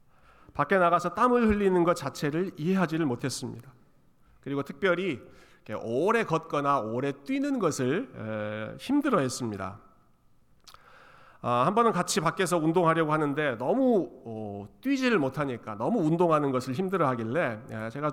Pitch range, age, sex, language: 125-175 Hz, 40-59, male, Korean